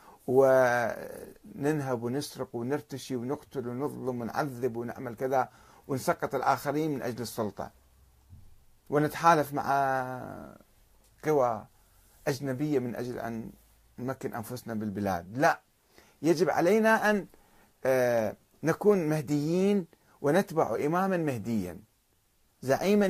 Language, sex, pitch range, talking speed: Arabic, male, 120-165 Hz, 85 wpm